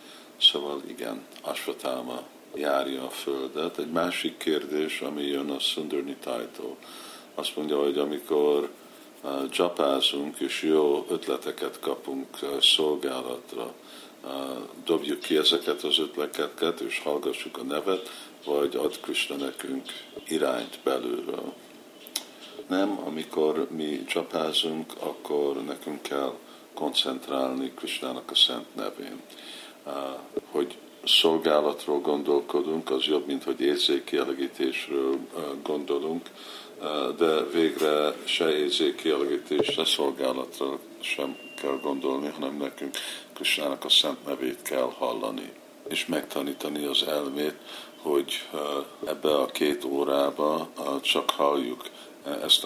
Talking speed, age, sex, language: 100 wpm, 50-69, male, Hungarian